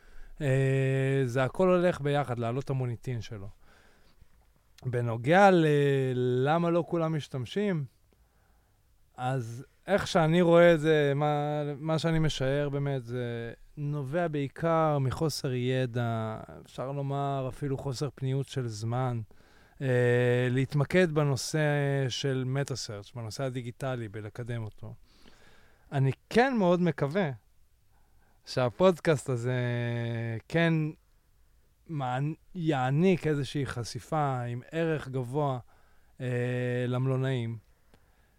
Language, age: Hebrew, 20-39